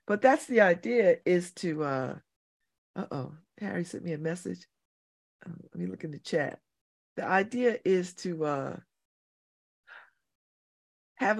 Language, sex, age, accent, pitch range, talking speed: English, female, 50-69, American, 165-235 Hz, 130 wpm